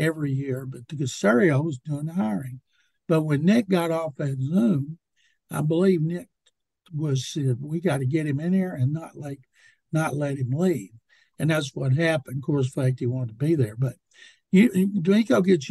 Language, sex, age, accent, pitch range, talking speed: English, male, 60-79, American, 140-175 Hz, 195 wpm